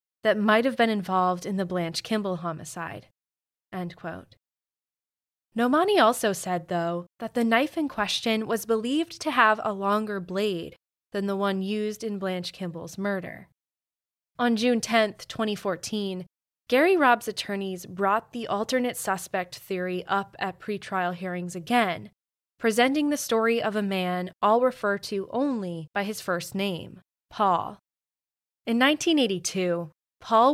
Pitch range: 180-225 Hz